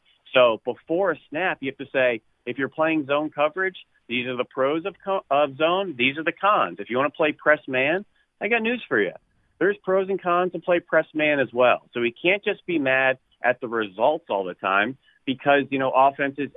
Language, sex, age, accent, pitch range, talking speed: English, male, 40-59, American, 125-170 Hz, 230 wpm